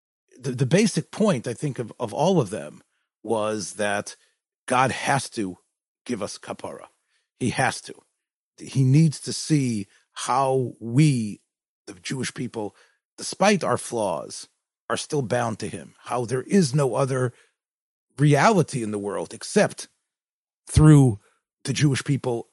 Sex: male